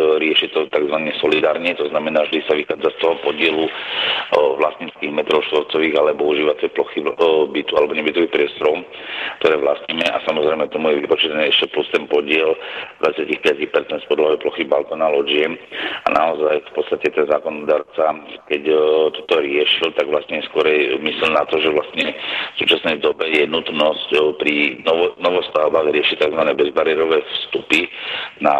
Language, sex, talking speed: Slovak, male, 145 wpm